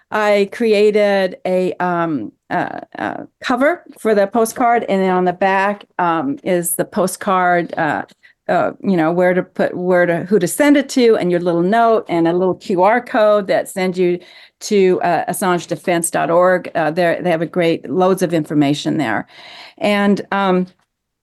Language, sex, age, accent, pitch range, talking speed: English, female, 50-69, American, 175-220 Hz, 165 wpm